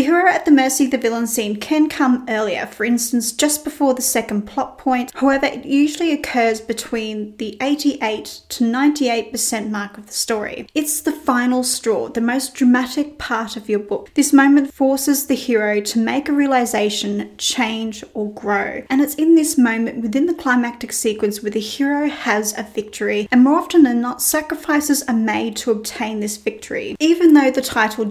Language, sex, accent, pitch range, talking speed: English, female, Australian, 225-280 Hz, 185 wpm